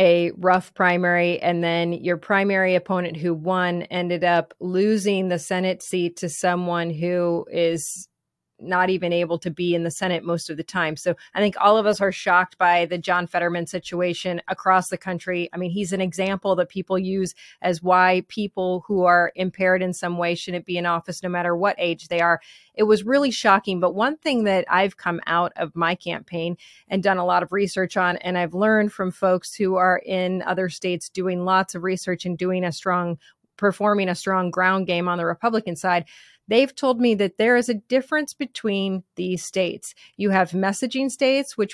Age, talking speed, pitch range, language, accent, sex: 30-49, 200 wpm, 175-195 Hz, English, American, female